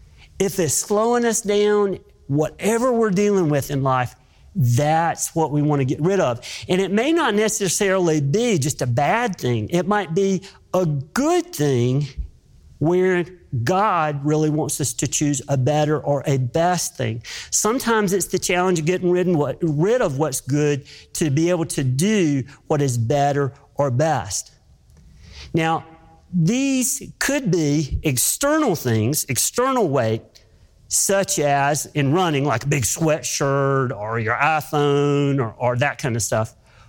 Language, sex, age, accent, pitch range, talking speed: English, male, 40-59, American, 125-180 Hz, 150 wpm